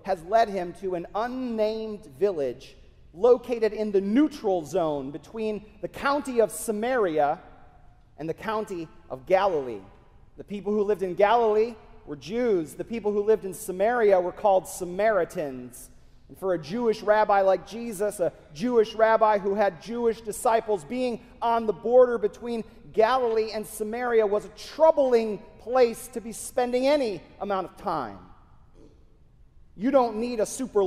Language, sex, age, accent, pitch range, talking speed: English, male, 40-59, American, 205-255 Hz, 150 wpm